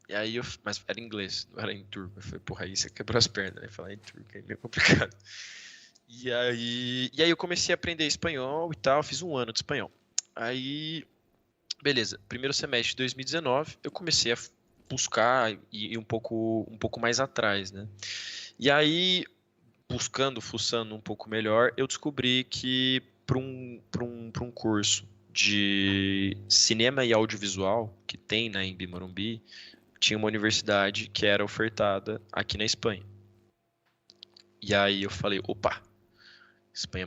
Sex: male